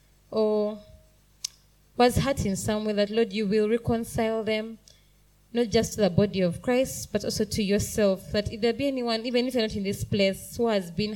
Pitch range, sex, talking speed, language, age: 190-230 Hz, female, 205 wpm, English, 20-39